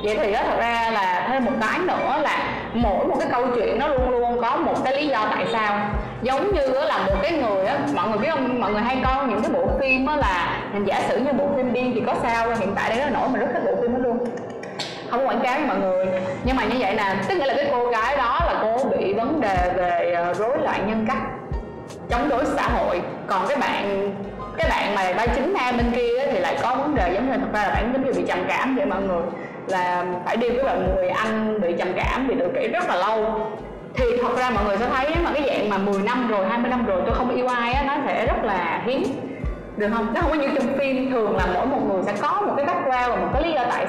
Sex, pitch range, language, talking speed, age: female, 210-260 Hz, Vietnamese, 265 wpm, 20-39